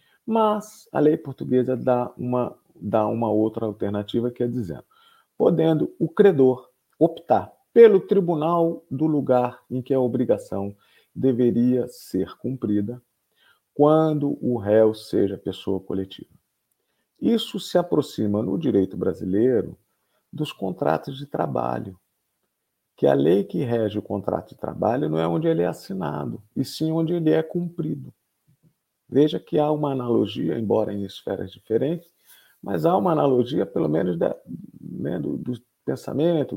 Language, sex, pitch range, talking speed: Portuguese, male, 105-170 Hz, 135 wpm